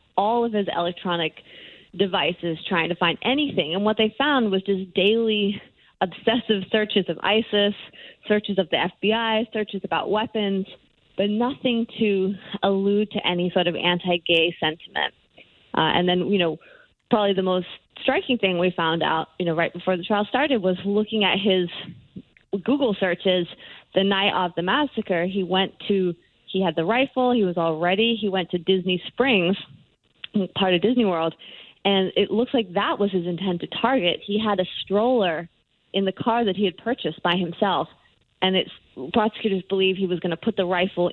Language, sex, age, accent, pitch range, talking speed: English, female, 20-39, American, 175-215 Hz, 180 wpm